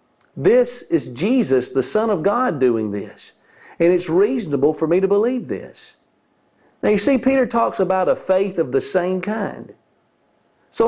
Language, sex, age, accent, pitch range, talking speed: English, male, 50-69, American, 150-210 Hz, 165 wpm